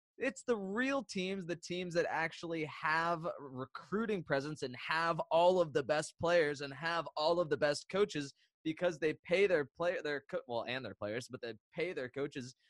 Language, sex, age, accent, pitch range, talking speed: English, male, 20-39, American, 115-160 Hz, 195 wpm